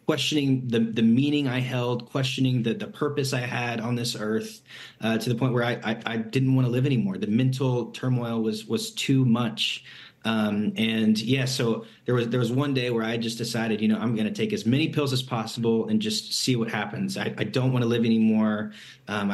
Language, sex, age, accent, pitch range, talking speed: English, male, 30-49, American, 110-125 Hz, 225 wpm